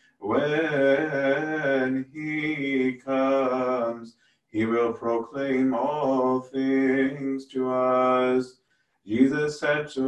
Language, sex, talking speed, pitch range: English, male, 75 wpm, 130-135 Hz